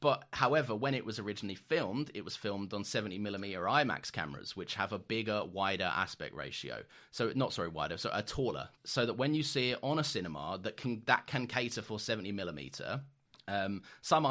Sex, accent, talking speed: male, British, 195 wpm